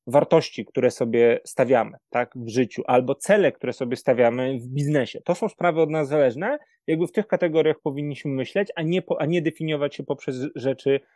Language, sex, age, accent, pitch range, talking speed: Polish, male, 20-39, native, 125-145 Hz, 190 wpm